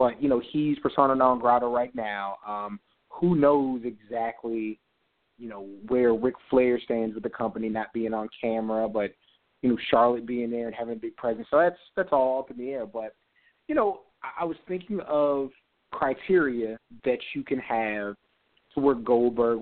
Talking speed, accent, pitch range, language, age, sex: 185 wpm, American, 110-140 Hz, English, 30-49, male